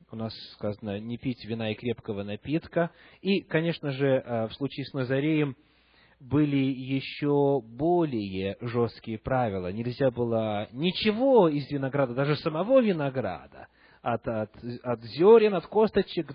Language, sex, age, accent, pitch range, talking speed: Russian, male, 30-49, native, 130-170 Hz, 130 wpm